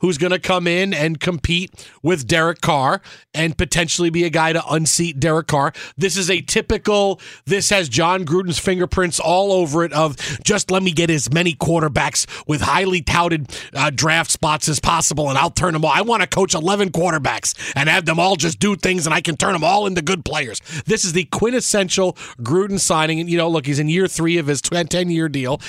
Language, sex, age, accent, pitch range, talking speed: English, male, 40-59, American, 155-195 Hz, 215 wpm